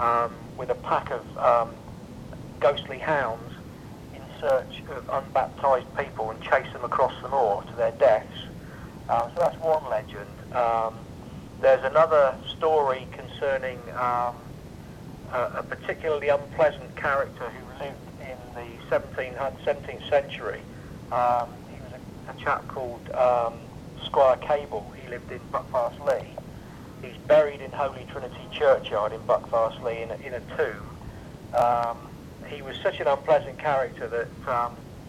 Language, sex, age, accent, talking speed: English, male, 50-69, British, 135 wpm